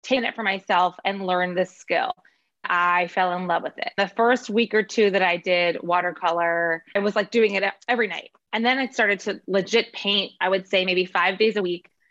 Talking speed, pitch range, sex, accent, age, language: 225 wpm, 180-230 Hz, female, American, 20-39, English